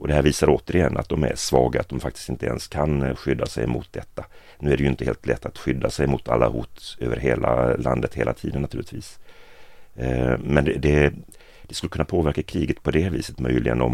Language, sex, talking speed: Swedish, male, 210 wpm